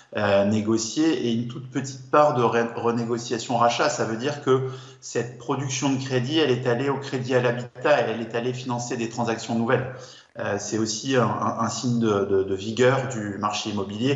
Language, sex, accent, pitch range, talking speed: French, male, French, 105-130 Hz, 200 wpm